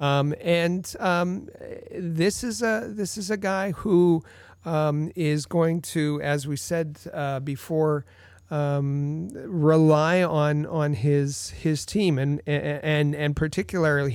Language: English